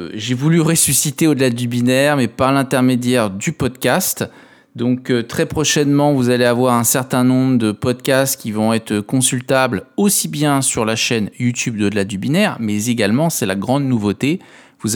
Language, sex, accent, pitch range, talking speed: French, male, French, 110-135 Hz, 170 wpm